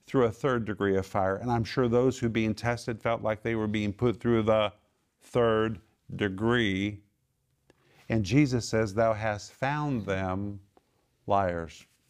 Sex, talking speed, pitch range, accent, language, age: male, 160 wpm, 100-125 Hz, American, English, 50-69